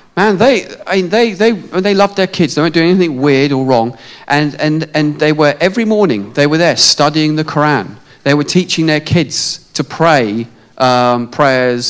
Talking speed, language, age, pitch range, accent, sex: 195 wpm, English, 40-59, 135-190 Hz, British, male